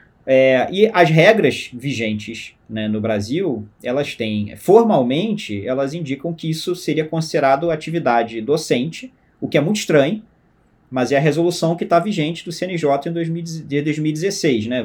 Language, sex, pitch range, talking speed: Portuguese, male, 115-165 Hz, 145 wpm